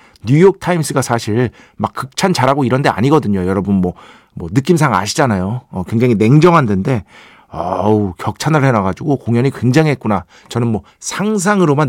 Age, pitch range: 50-69, 105-165 Hz